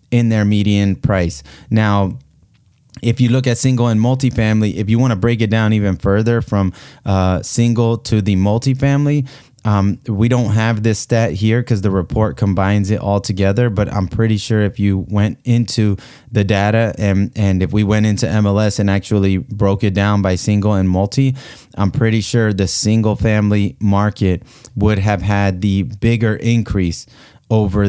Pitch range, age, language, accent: 95-110 Hz, 20-39, English, American